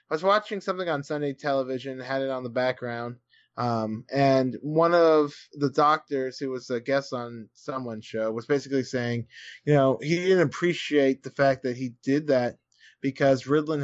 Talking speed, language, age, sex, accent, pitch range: 180 wpm, English, 20-39, male, American, 125-150 Hz